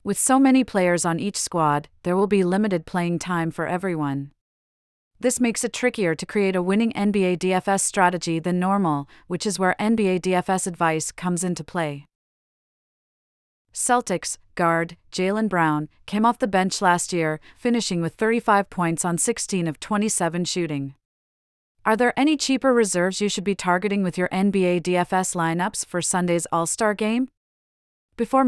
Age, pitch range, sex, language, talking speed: 40-59, 175-205 Hz, female, English, 160 wpm